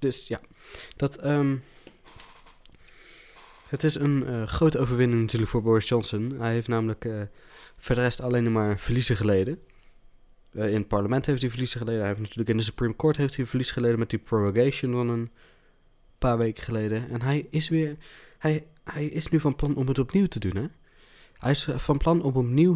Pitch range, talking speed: 110-140 Hz, 190 wpm